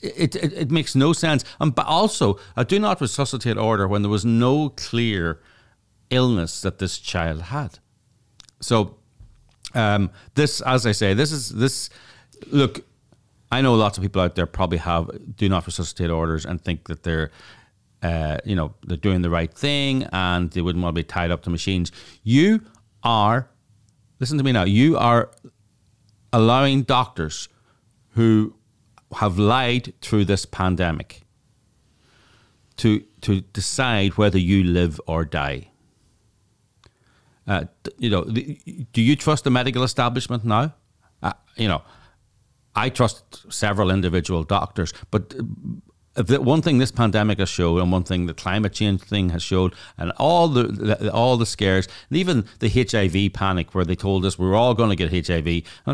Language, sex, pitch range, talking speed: English, male, 95-125 Hz, 160 wpm